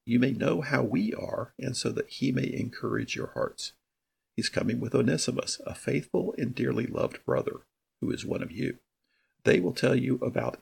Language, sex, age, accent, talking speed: English, male, 50-69, American, 190 wpm